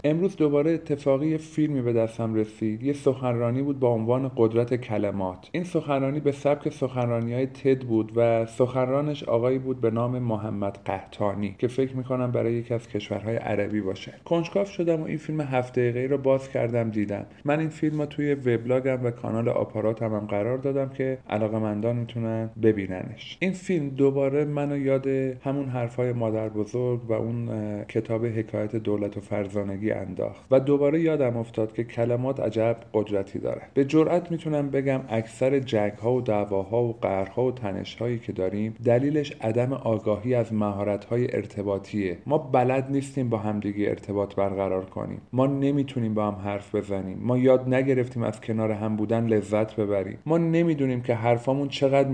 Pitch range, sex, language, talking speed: 110-135 Hz, male, Persian, 165 wpm